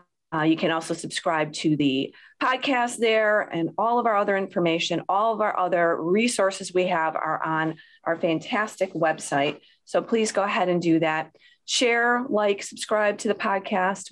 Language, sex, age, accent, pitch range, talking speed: English, female, 30-49, American, 170-225 Hz, 170 wpm